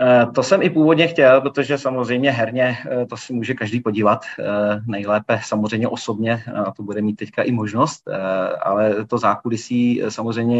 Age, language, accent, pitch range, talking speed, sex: 30-49, Czech, native, 105-120 Hz, 155 wpm, male